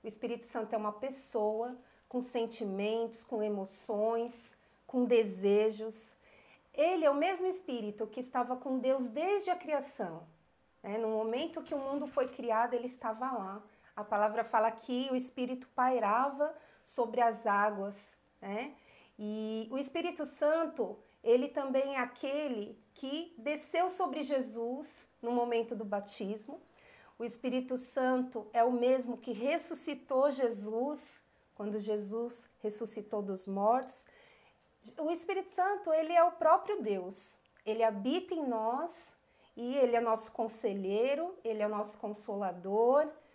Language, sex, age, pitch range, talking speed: Portuguese, female, 40-59, 220-290 Hz, 135 wpm